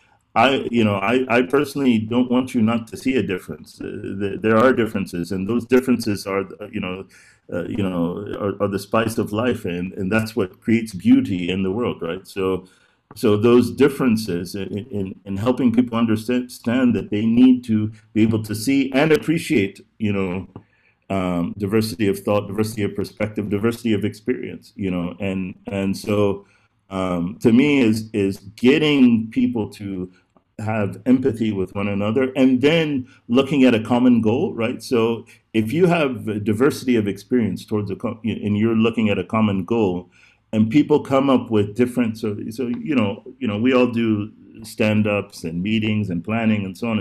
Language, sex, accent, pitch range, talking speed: English, male, American, 100-120 Hz, 185 wpm